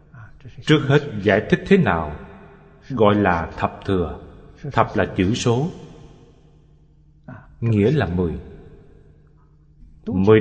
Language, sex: Vietnamese, male